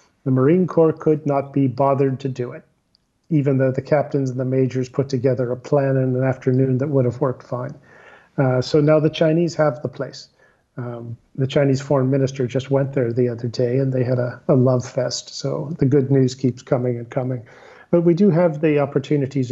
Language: English